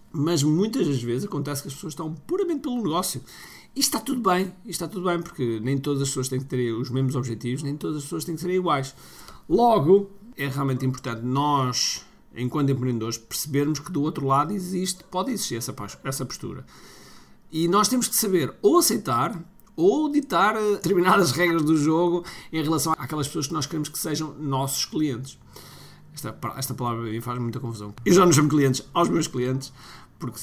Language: Portuguese